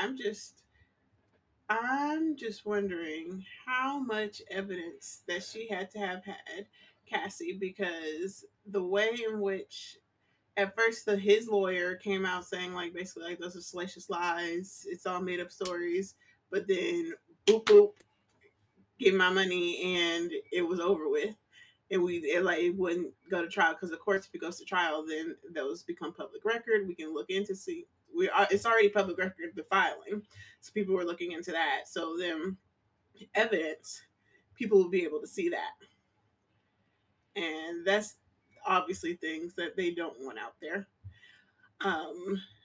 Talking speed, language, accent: 160 wpm, English, American